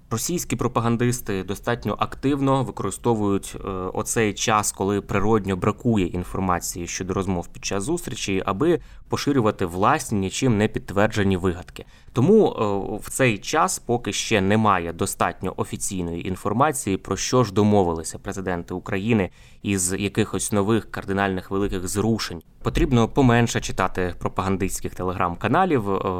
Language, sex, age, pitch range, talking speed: Ukrainian, male, 20-39, 95-115 Hz, 115 wpm